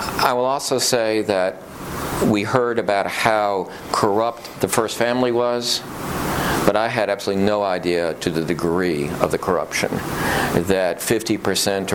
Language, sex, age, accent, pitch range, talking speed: English, male, 50-69, American, 90-105 Hz, 140 wpm